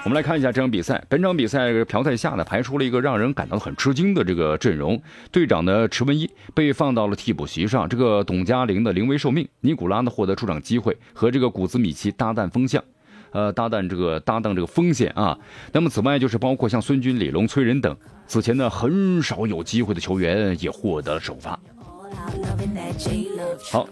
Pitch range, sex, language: 100-135 Hz, male, Japanese